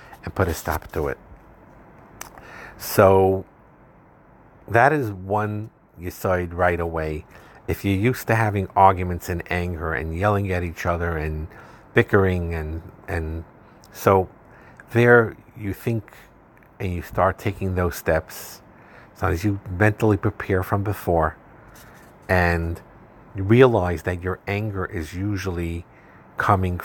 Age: 50-69